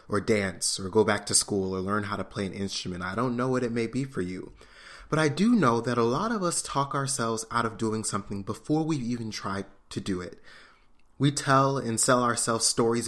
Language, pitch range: English, 105-135 Hz